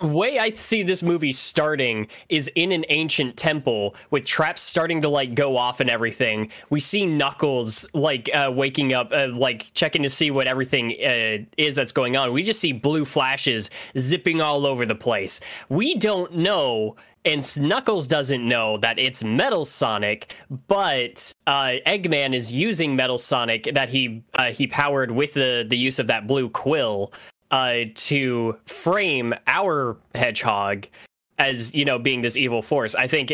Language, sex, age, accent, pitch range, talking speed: English, male, 10-29, American, 115-145 Hz, 170 wpm